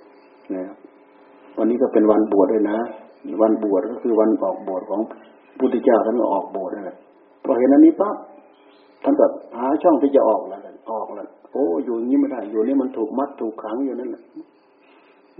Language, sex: Thai, male